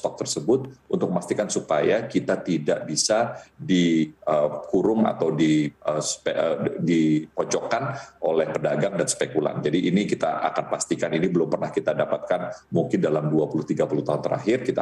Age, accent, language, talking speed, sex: 40-59, native, Indonesian, 140 wpm, male